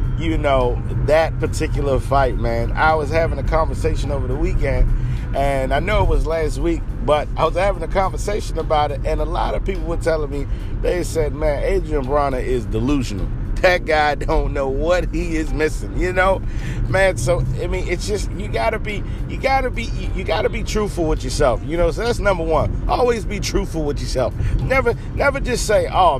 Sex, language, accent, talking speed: male, English, American, 200 wpm